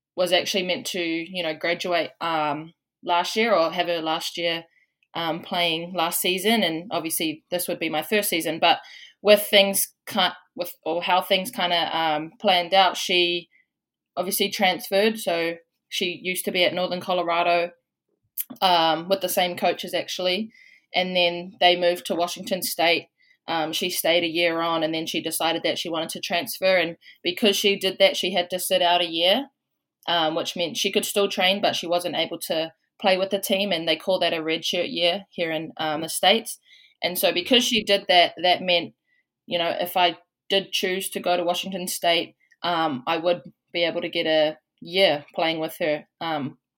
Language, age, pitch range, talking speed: English, 20-39, 170-195 Hz, 195 wpm